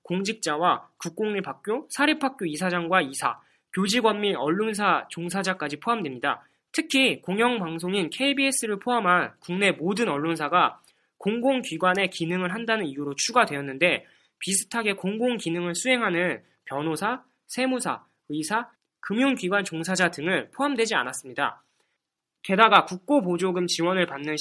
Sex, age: male, 20-39